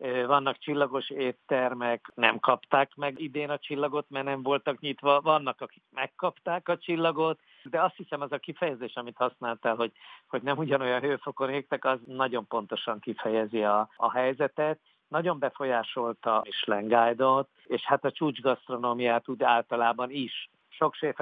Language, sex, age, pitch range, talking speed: Hungarian, male, 50-69, 120-140 Hz, 145 wpm